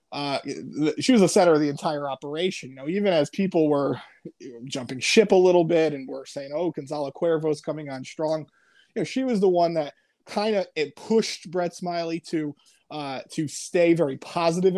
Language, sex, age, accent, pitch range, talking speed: English, male, 20-39, American, 145-170 Hz, 205 wpm